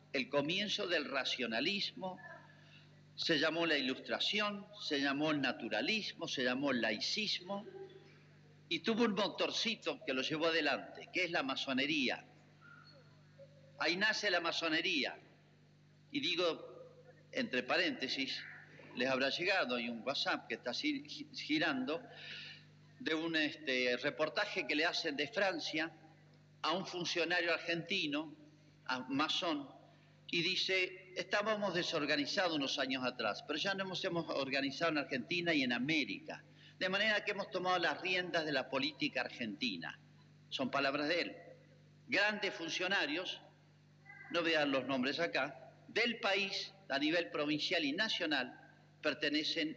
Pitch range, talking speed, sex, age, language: 145-195 Hz, 130 wpm, male, 50-69, Spanish